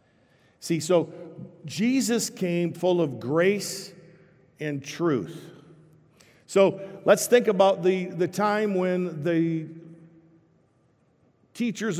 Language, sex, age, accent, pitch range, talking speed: English, male, 50-69, American, 145-180 Hz, 95 wpm